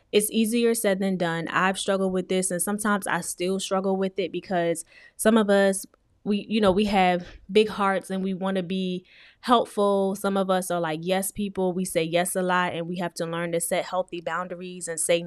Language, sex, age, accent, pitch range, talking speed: English, female, 10-29, American, 175-195 Hz, 220 wpm